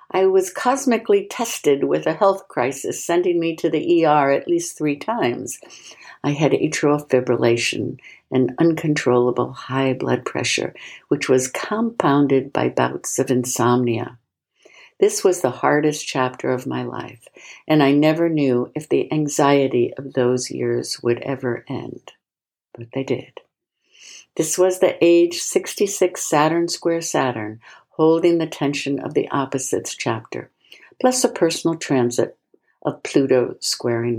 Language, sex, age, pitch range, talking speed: English, female, 60-79, 130-165 Hz, 140 wpm